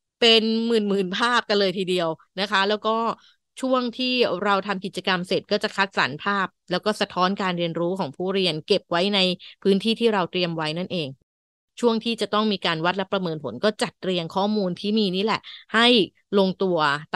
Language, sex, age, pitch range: Thai, female, 20-39, 175-220 Hz